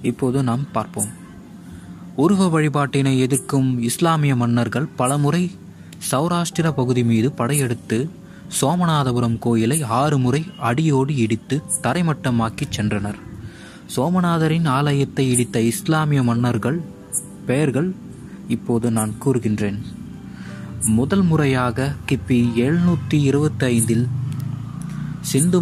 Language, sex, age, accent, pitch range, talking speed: Tamil, male, 20-39, native, 115-150 Hz, 85 wpm